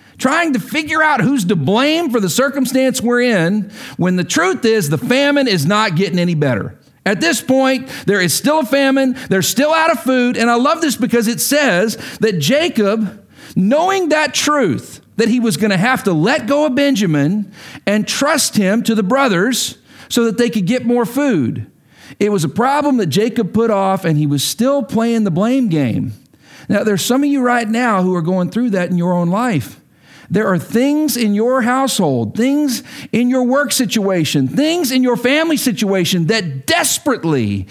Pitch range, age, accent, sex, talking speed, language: 180-255 Hz, 50-69, American, male, 195 wpm, English